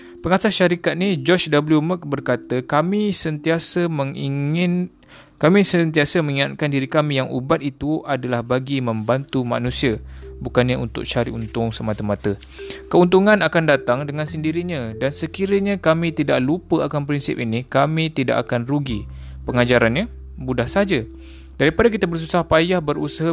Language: Malay